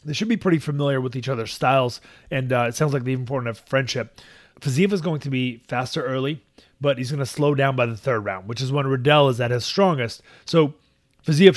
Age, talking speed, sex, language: 30-49, 240 wpm, male, English